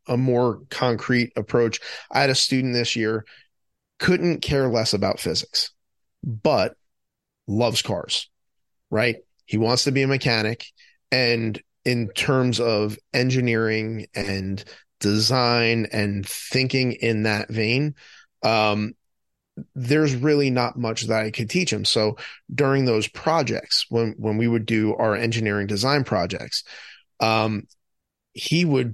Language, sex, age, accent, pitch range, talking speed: English, male, 30-49, American, 110-130 Hz, 130 wpm